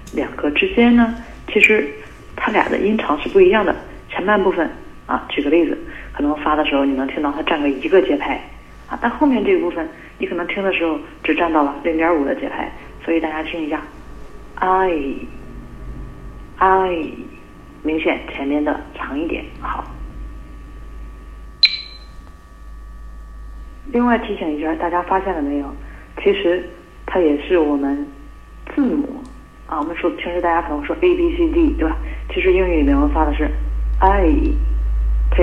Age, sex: 40-59, female